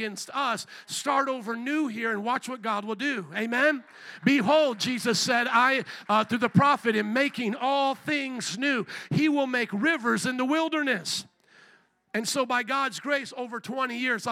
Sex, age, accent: male, 50-69, American